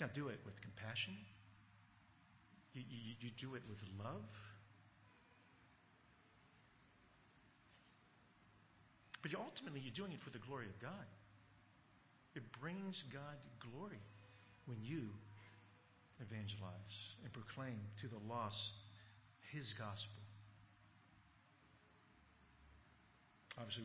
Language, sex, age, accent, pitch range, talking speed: English, male, 50-69, American, 105-145 Hz, 95 wpm